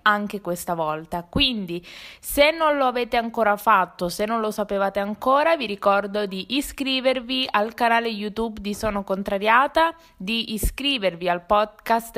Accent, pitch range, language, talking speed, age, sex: native, 190-245 Hz, Italian, 145 wpm, 20-39, female